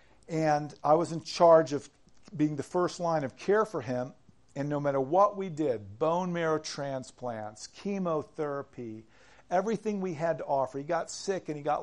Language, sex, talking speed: English, male, 180 wpm